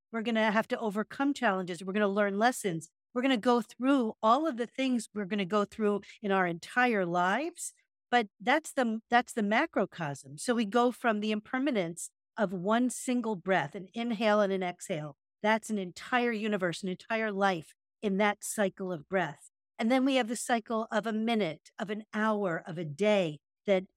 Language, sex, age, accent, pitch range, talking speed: English, female, 50-69, American, 200-245 Hz, 200 wpm